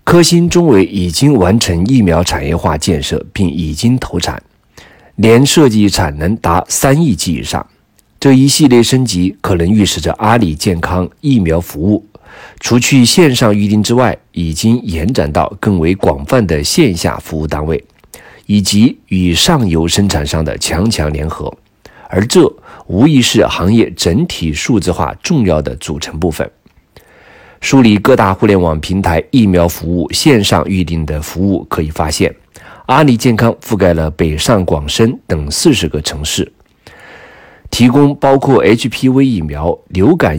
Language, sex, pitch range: Chinese, male, 80-120 Hz